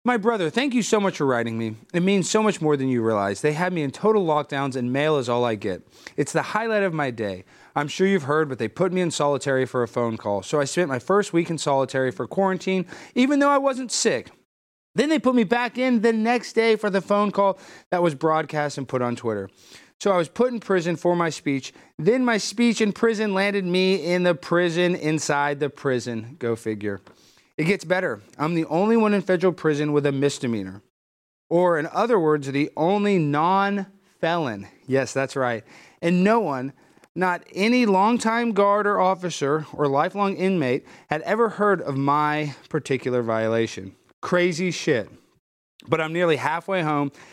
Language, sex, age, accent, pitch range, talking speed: English, male, 30-49, American, 135-195 Hz, 200 wpm